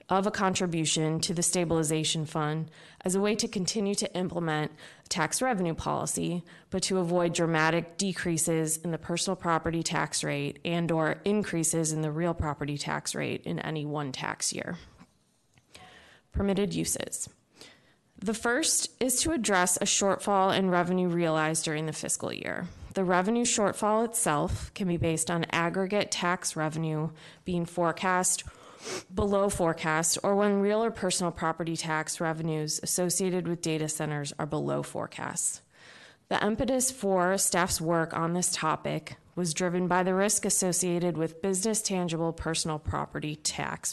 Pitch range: 160-195 Hz